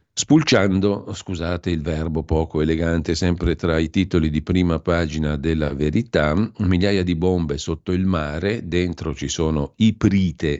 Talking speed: 140 wpm